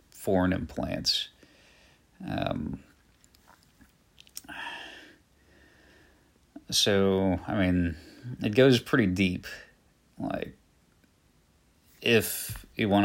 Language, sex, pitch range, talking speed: English, male, 90-100 Hz, 65 wpm